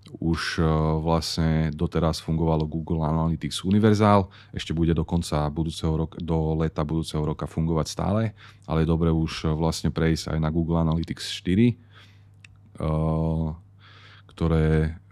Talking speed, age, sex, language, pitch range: 125 wpm, 30-49, male, Slovak, 80-90 Hz